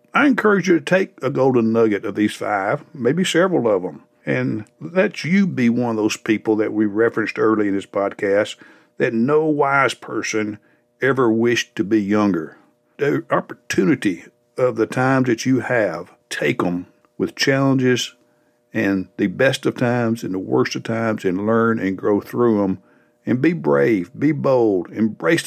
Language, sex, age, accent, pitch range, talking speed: English, male, 60-79, American, 105-135 Hz, 170 wpm